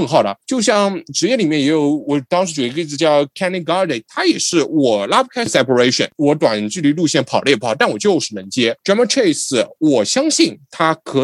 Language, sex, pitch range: Chinese, male, 140-205 Hz